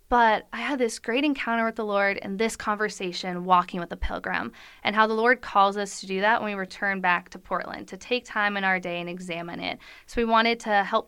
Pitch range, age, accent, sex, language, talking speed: 180-215 Hz, 20-39, American, female, English, 245 wpm